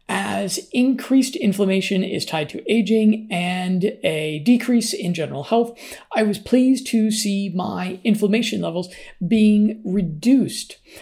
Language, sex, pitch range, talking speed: English, male, 185-230 Hz, 125 wpm